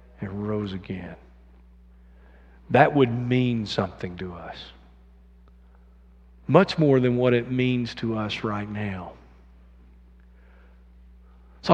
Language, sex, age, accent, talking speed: English, male, 50-69, American, 100 wpm